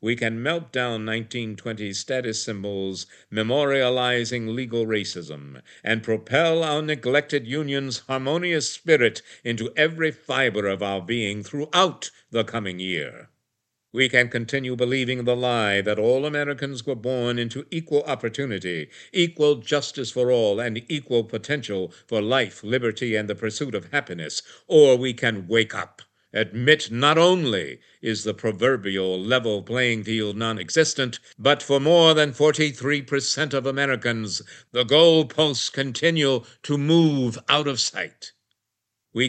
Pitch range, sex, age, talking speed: 110-145 Hz, male, 60-79, 135 wpm